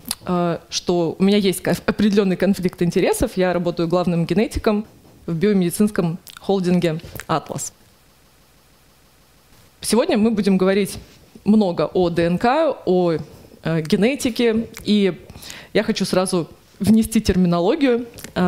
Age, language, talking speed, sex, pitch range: 20-39, Russian, 95 wpm, female, 170-210 Hz